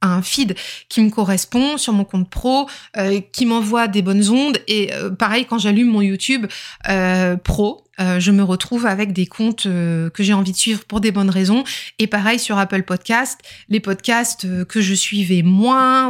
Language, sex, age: French, female, 20-39